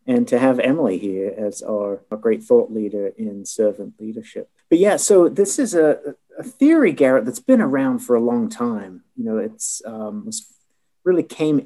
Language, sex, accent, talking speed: English, male, American, 190 wpm